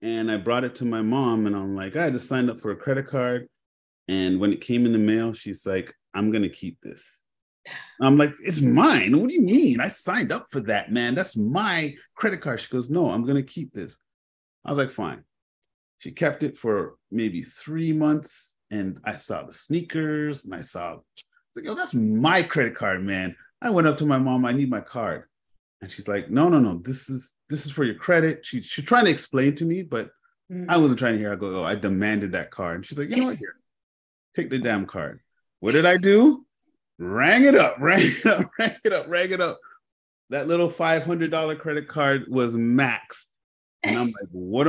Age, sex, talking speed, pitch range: 30-49, male, 230 wpm, 110-170 Hz